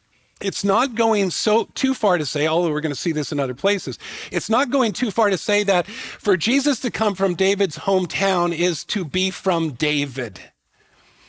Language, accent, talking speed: English, American, 195 wpm